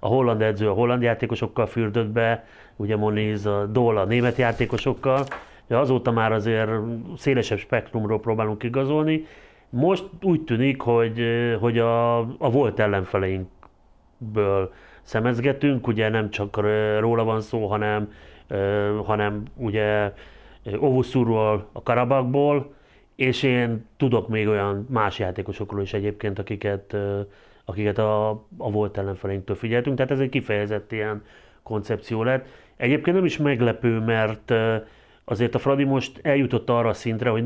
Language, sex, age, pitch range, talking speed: Hungarian, male, 30-49, 105-125 Hz, 130 wpm